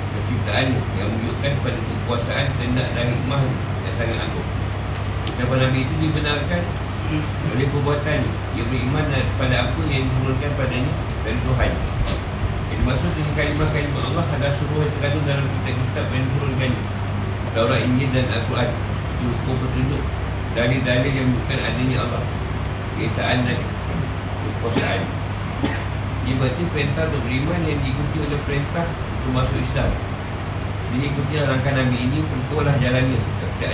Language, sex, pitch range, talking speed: Malay, male, 100-130 Hz, 130 wpm